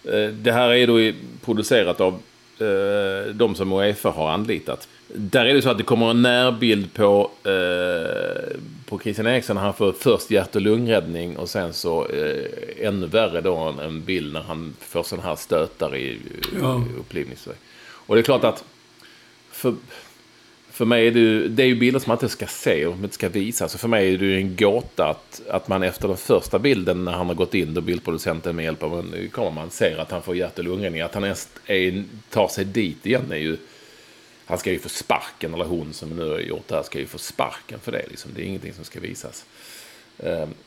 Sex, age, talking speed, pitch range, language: male, 30-49, 215 wpm, 90-130 Hz, English